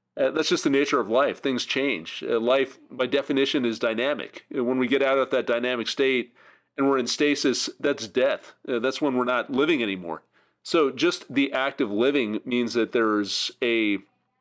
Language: English